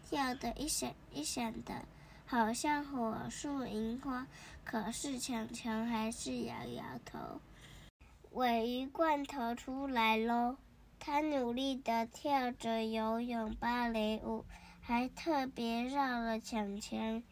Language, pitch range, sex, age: Chinese, 225-265 Hz, male, 10-29